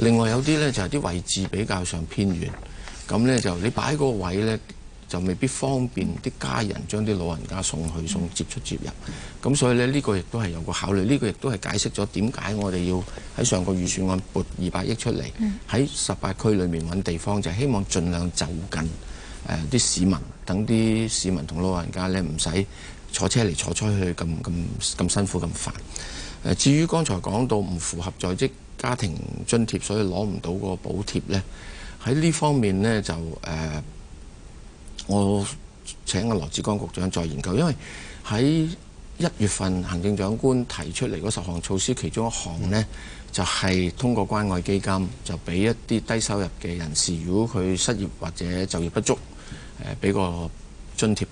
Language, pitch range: Chinese, 85-110 Hz